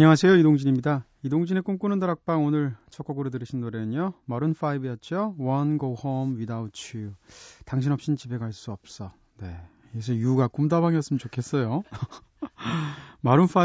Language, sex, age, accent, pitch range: Korean, male, 30-49, native, 115-150 Hz